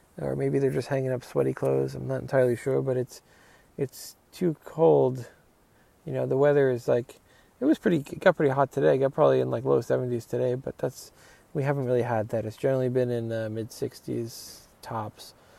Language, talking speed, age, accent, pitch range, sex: English, 210 wpm, 20-39, American, 120-140 Hz, male